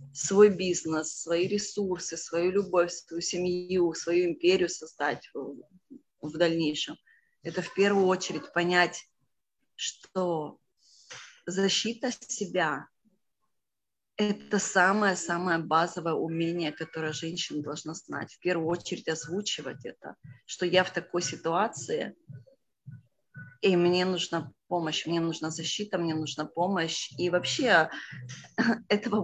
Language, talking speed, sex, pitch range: Russian, 110 wpm, female, 160-190 Hz